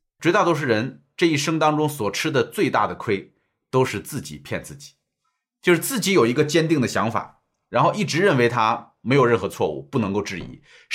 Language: Chinese